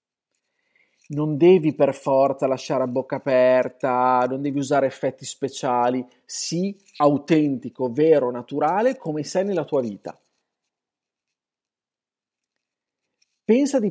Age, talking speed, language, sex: 40-59, 105 wpm, Italian, male